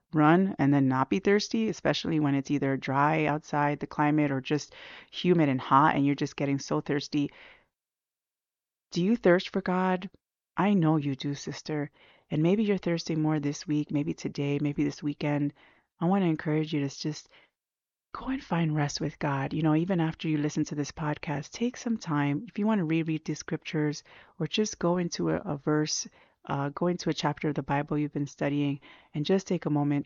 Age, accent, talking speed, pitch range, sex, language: 30-49, American, 205 wpm, 145-175 Hz, female, English